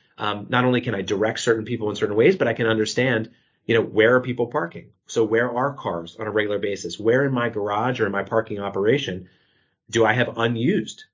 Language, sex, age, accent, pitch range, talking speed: English, male, 30-49, American, 105-125 Hz, 225 wpm